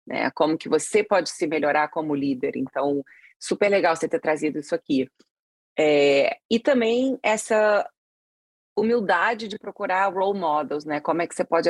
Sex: female